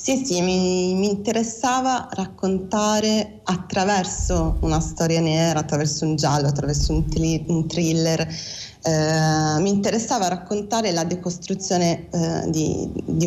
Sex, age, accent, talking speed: female, 30-49, native, 120 wpm